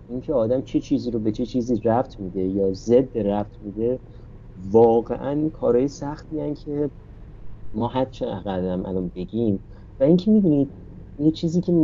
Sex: male